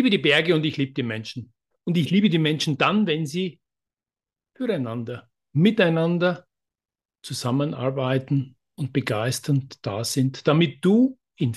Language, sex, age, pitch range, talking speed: German, male, 50-69, 120-155 Hz, 140 wpm